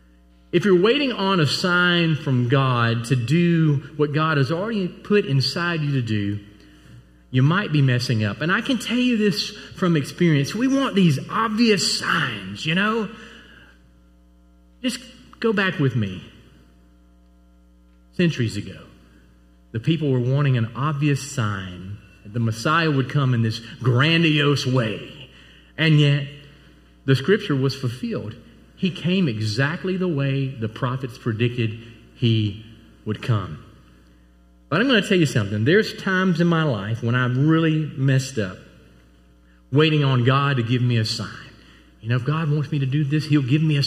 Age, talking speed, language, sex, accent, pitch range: 40-59, 160 wpm, English, male, American, 115-180 Hz